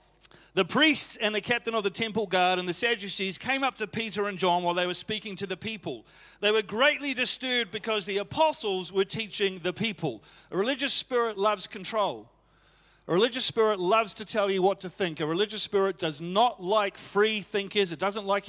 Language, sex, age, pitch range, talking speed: English, male, 40-59, 175-215 Hz, 200 wpm